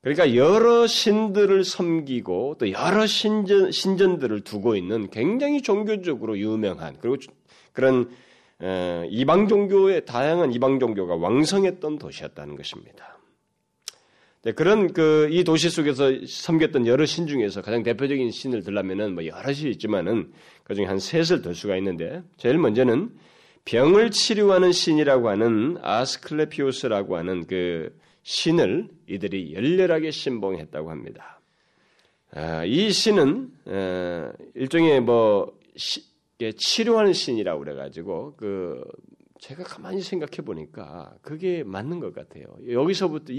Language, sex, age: Korean, male, 30-49